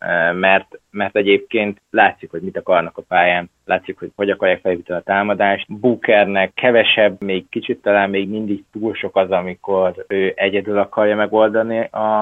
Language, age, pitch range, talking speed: Hungarian, 20-39, 95-110 Hz, 155 wpm